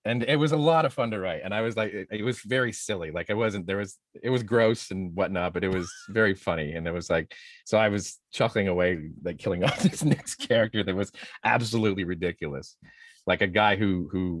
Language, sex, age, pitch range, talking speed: English, male, 40-59, 85-110 Hz, 240 wpm